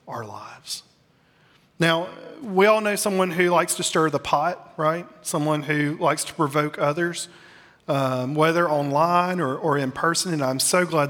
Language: English